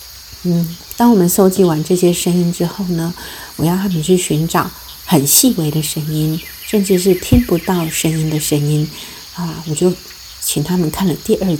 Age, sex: 50-69, female